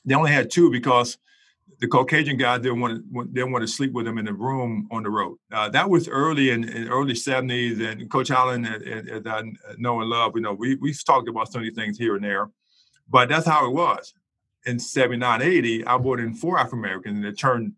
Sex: male